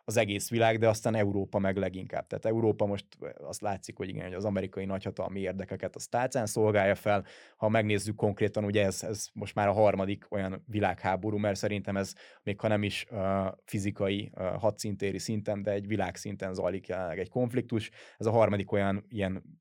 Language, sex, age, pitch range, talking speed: Hungarian, male, 20-39, 95-110 Hz, 185 wpm